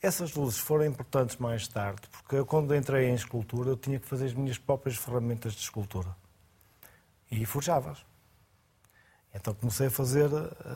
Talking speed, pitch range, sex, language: 155 wpm, 110-140 Hz, male, Portuguese